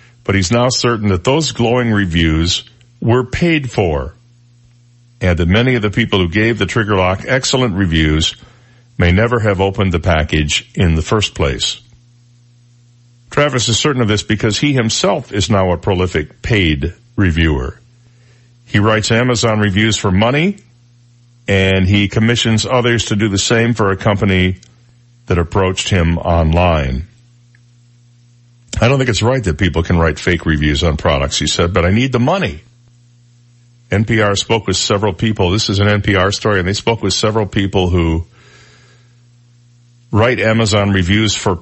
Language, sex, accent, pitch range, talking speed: English, male, American, 90-120 Hz, 160 wpm